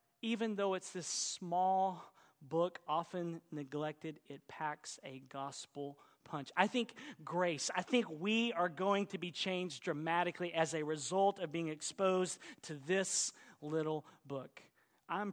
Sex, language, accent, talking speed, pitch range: male, English, American, 140 wpm, 160-215 Hz